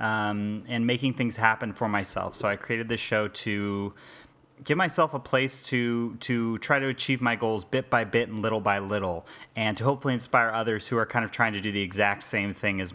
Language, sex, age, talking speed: English, male, 30-49, 225 wpm